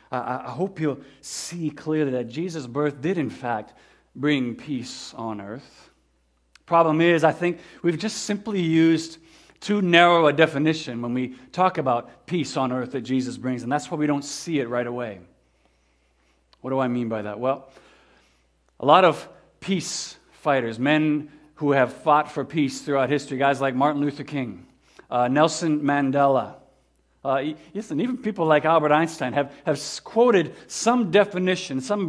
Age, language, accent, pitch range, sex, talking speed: 50-69, English, American, 130-165 Hz, male, 165 wpm